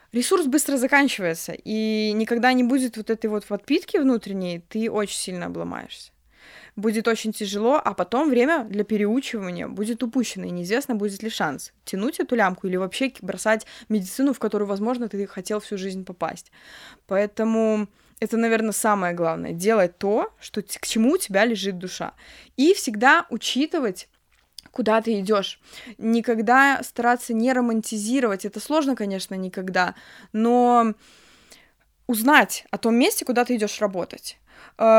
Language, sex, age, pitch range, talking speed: Russian, female, 20-39, 205-255 Hz, 140 wpm